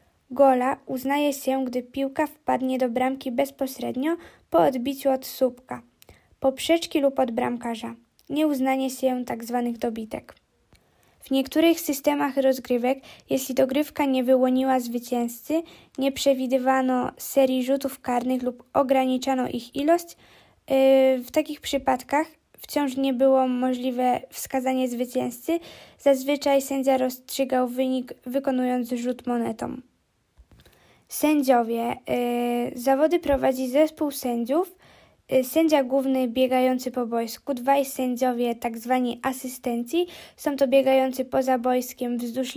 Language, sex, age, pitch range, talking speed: Polish, female, 10-29, 250-280 Hz, 105 wpm